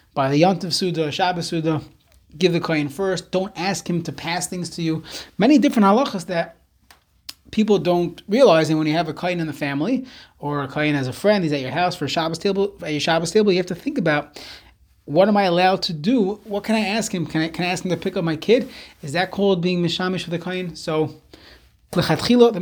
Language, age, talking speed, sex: English, 30-49, 240 wpm, male